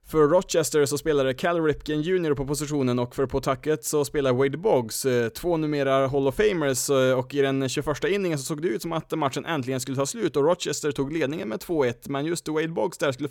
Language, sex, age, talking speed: Swedish, male, 20-39, 220 wpm